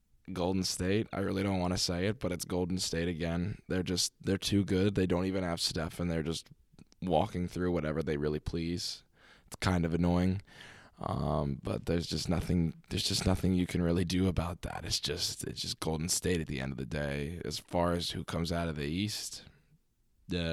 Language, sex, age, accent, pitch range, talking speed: English, male, 20-39, American, 80-95 Hz, 215 wpm